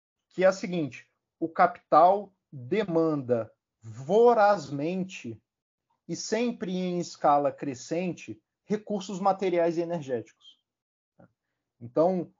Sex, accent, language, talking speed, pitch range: male, Brazilian, Portuguese, 85 wpm, 135-185 Hz